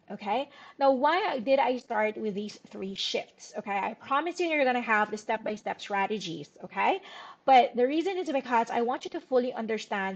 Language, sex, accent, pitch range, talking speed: English, female, Filipino, 195-250 Hz, 190 wpm